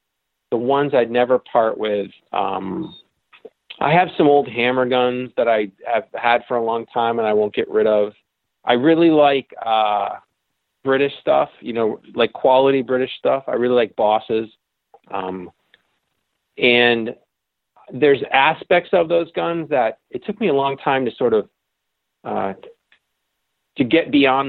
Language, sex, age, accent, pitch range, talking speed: English, male, 40-59, American, 115-150 Hz, 155 wpm